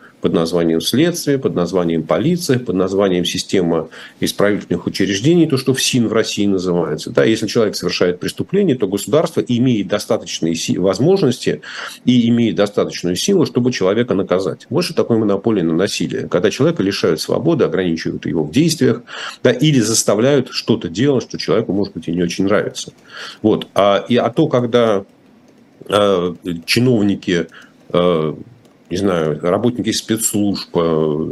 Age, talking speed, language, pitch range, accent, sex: 40-59, 145 wpm, Russian, 90-120 Hz, native, male